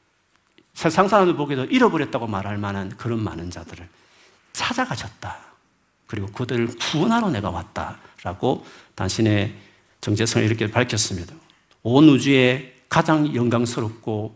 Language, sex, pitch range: Korean, male, 110-145 Hz